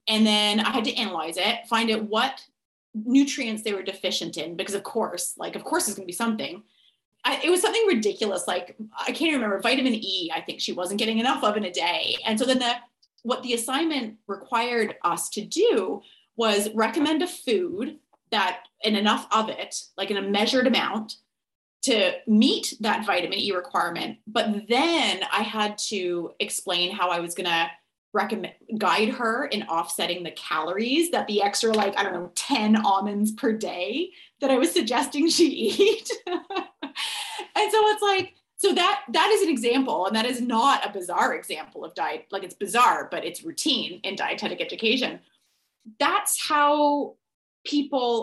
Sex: female